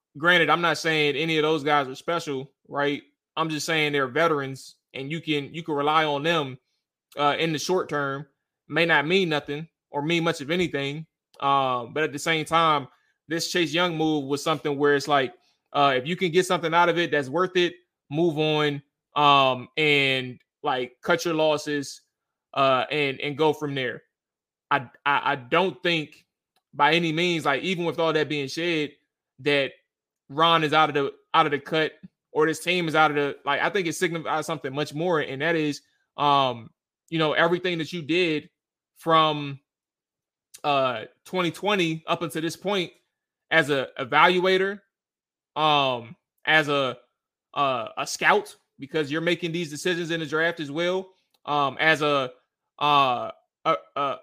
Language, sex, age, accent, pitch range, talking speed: English, male, 20-39, American, 145-170 Hz, 175 wpm